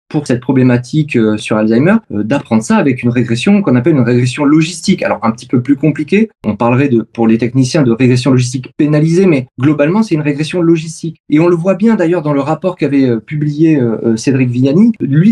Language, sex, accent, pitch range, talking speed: French, male, French, 135-185 Hz, 200 wpm